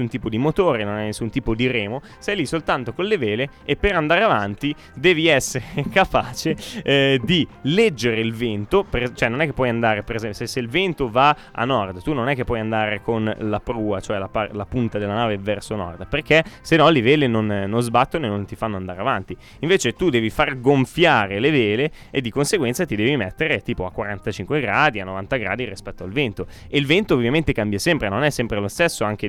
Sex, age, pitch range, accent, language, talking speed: male, 20-39, 105-140 Hz, native, Italian, 225 wpm